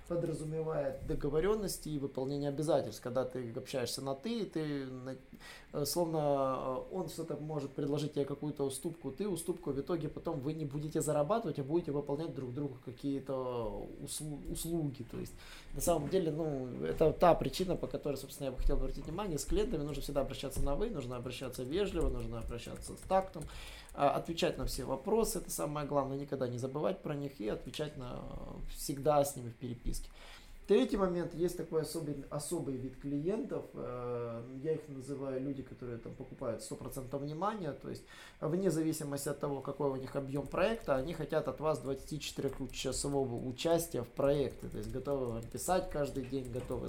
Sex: male